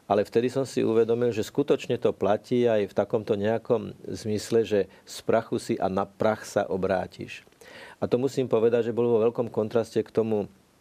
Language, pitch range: Slovak, 100-115 Hz